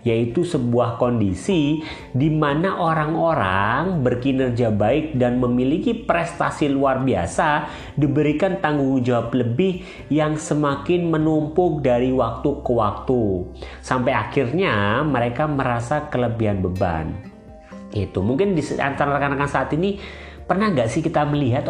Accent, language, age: native, Indonesian, 30-49